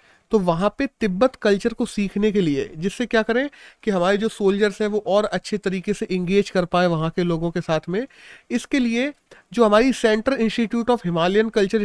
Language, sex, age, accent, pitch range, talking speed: Hindi, male, 30-49, native, 180-225 Hz, 205 wpm